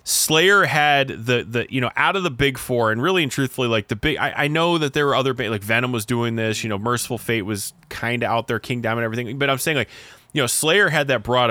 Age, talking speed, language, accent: 20-39, 275 wpm, English, American